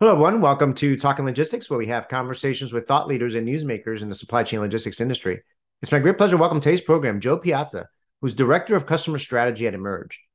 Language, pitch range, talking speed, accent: English, 120-165 Hz, 225 wpm, American